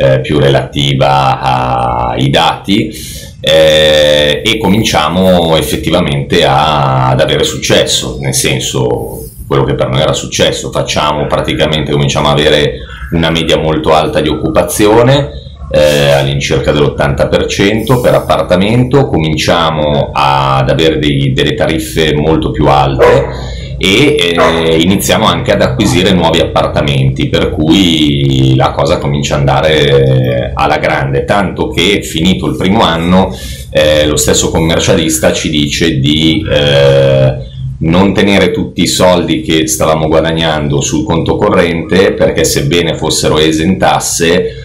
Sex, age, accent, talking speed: male, 30-49, native, 120 wpm